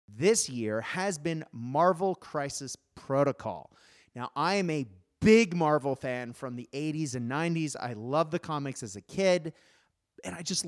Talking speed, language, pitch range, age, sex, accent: 165 wpm, English, 130-190 Hz, 30-49, male, American